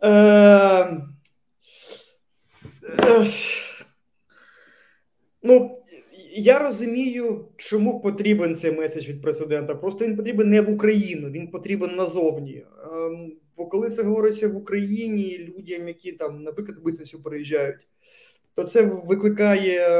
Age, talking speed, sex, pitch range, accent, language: 20-39, 110 wpm, male, 160-215 Hz, native, Ukrainian